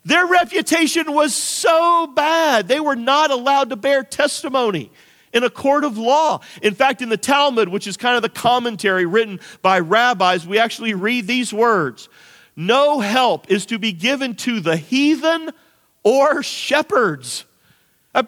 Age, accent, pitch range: 40-59, American, 205-285 Hz